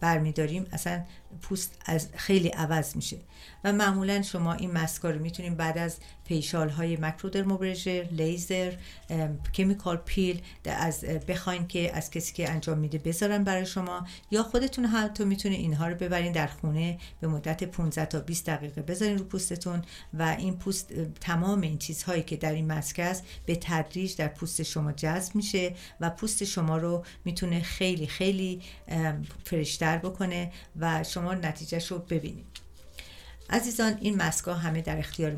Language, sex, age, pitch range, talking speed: Persian, female, 50-69, 160-185 Hz, 155 wpm